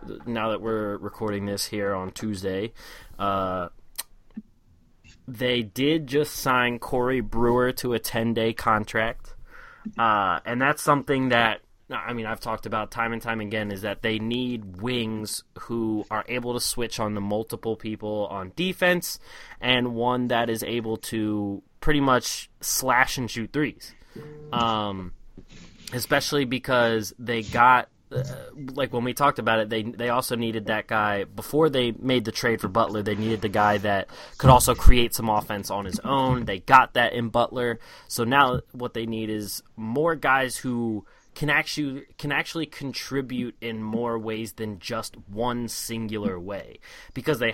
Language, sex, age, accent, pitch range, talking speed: English, male, 20-39, American, 110-125 Hz, 165 wpm